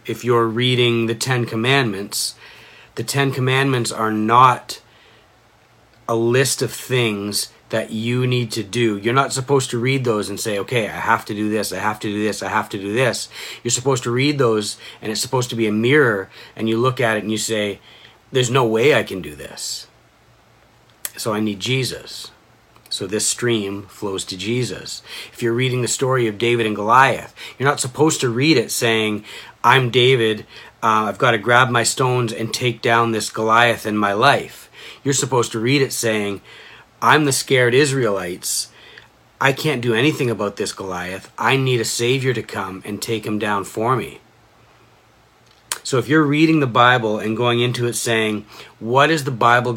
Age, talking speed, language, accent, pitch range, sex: 40-59, 190 wpm, English, American, 110-130 Hz, male